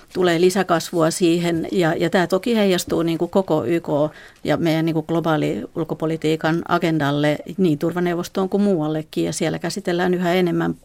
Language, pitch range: Finnish, 160-175 Hz